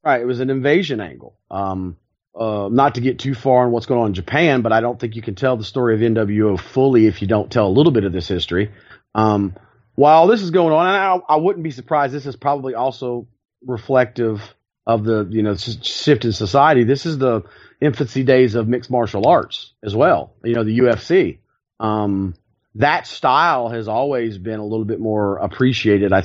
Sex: male